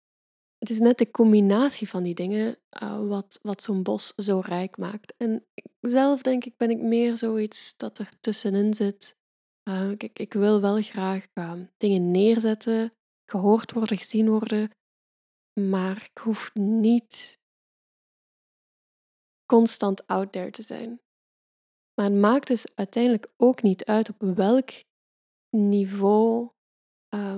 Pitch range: 200-235 Hz